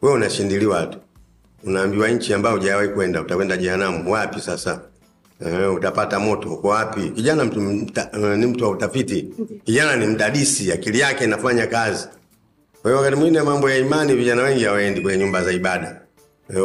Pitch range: 105-135 Hz